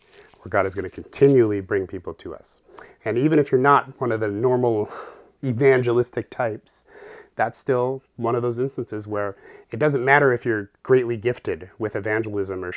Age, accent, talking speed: 30-49, American, 175 wpm